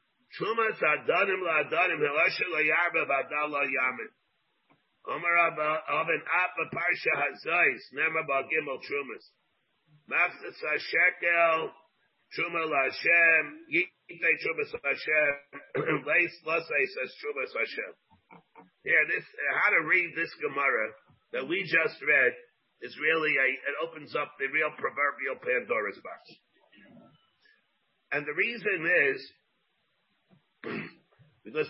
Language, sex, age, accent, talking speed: English, male, 50-69, American, 110 wpm